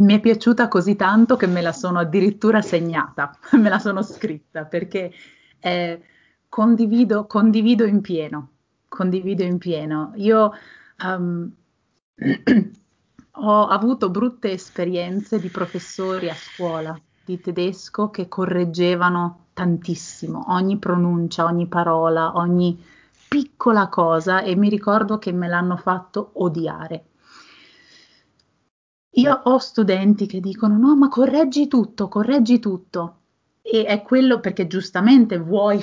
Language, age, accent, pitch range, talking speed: Italian, 30-49, native, 175-220 Hz, 120 wpm